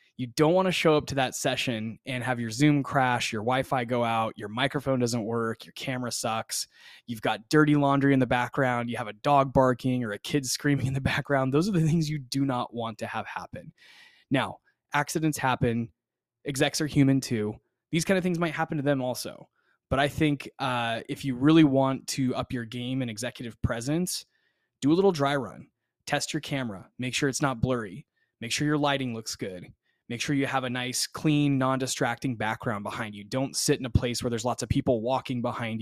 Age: 20-39